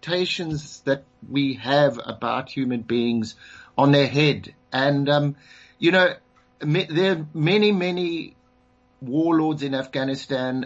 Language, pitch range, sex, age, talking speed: English, 120-160 Hz, male, 50-69, 115 wpm